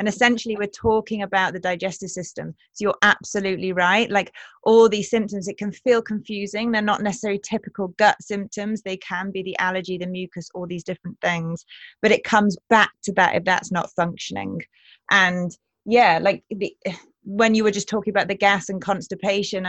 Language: English